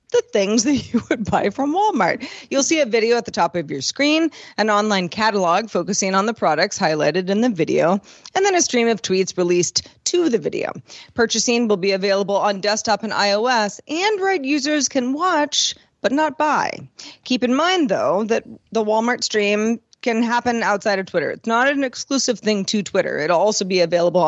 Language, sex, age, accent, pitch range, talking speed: English, female, 30-49, American, 195-275 Hz, 195 wpm